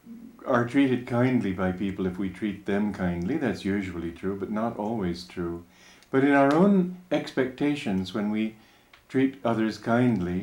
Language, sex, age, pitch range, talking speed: English, male, 50-69, 85-130 Hz, 155 wpm